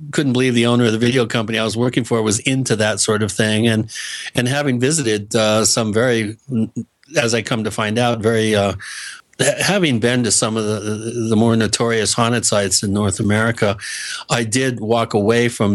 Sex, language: male, English